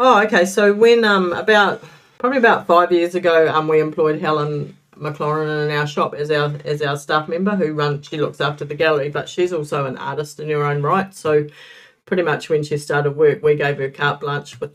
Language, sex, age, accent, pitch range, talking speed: English, female, 40-59, Australian, 135-150 Hz, 220 wpm